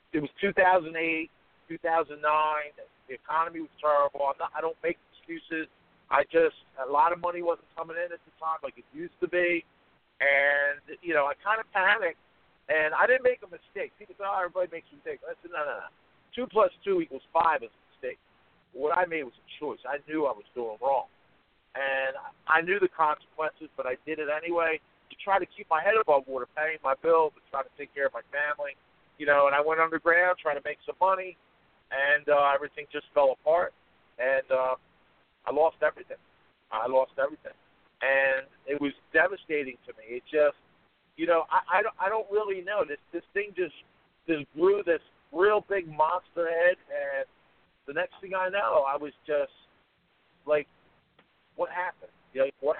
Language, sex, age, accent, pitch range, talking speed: English, male, 50-69, American, 145-190 Hz, 195 wpm